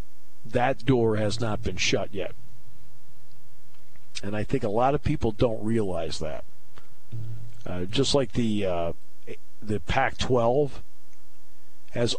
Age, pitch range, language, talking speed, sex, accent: 50-69, 75-120 Hz, English, 125 wpm, male, American